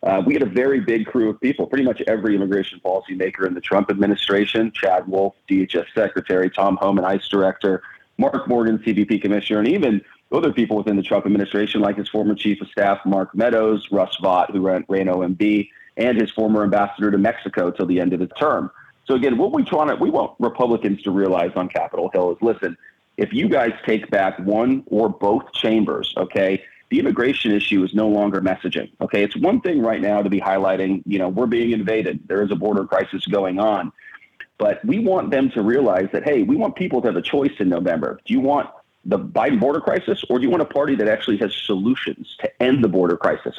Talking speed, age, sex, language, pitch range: 220 wpm, 40-59, male, English, 95-115 Hz